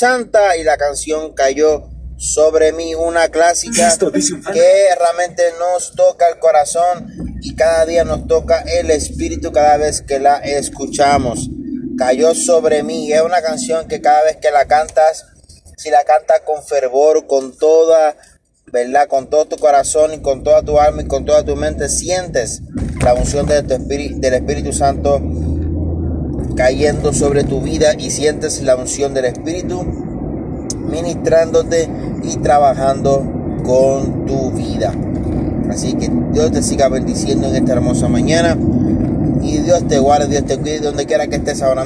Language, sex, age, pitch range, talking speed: Spanish, male, 30-49, 135-165 Hz, 155 wpm